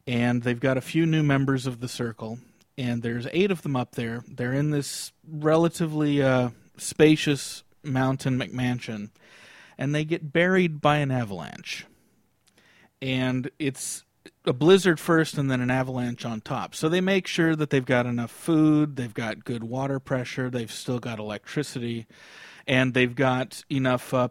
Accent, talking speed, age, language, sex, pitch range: American, 165 wpm, 40-59, English, male, 120-150 Hz